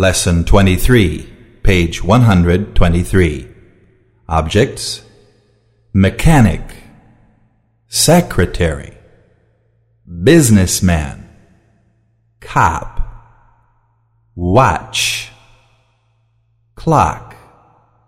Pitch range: 100-115 Hz